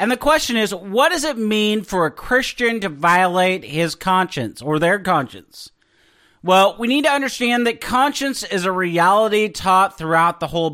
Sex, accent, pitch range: male, American, 185-235 Hz